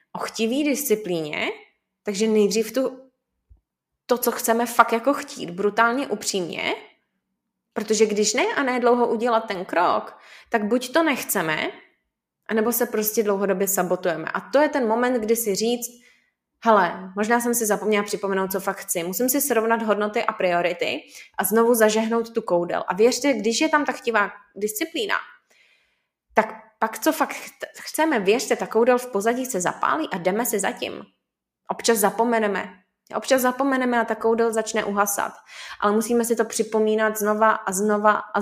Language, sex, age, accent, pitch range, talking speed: Czech, female, 20-39, native, 205-245 Hz, 160 wpm